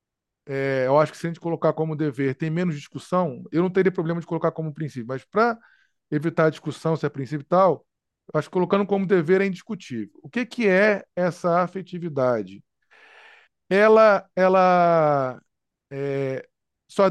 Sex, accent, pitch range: male, Brazilian, 145-190 Hz